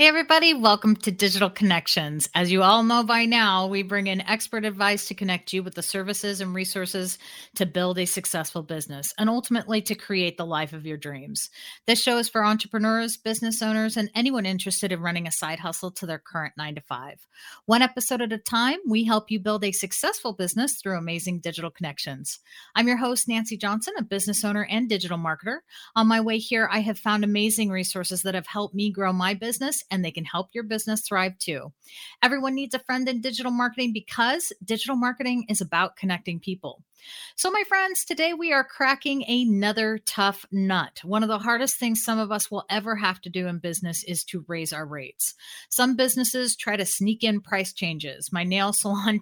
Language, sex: English, female